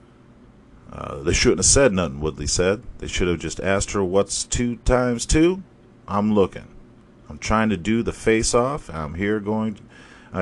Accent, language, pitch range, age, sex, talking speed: American, English, 85-115 Hz, 40-59, male, 180 wpm